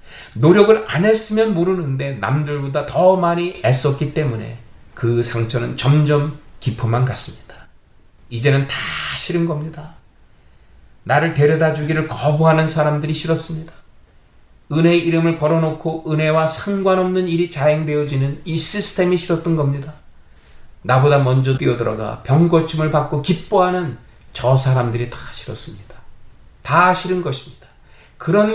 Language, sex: Korean, male